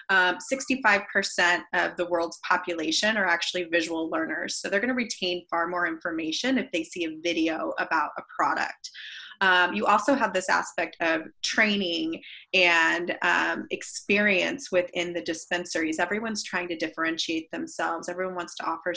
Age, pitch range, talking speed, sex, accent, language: 20-39, 170-200 Hz, 150 wpm, female, American, English